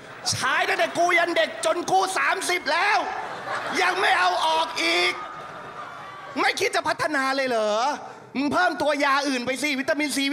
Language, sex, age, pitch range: Thai, male, 30-49, 185-290 Hz